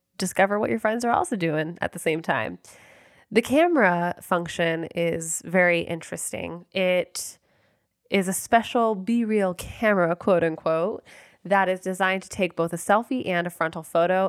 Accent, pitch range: American, 170-215 Hz